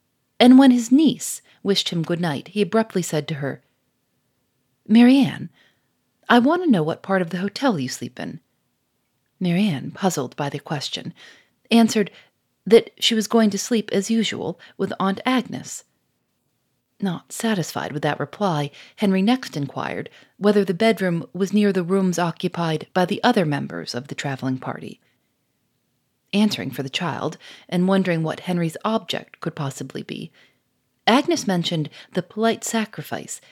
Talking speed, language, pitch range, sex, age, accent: 150 wpm, English, 155-220 Hz, female, 40-59, American